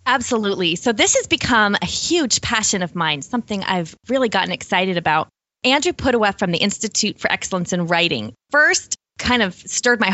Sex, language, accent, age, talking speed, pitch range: female, English, American, 20-39, 180 wpm, 180-235 Hz